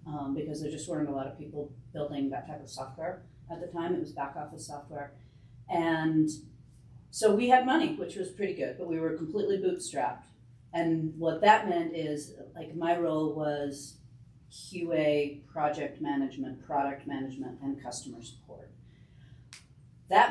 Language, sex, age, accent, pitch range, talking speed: English, female, 40-59, American, 145-195 Hz, 160 wpm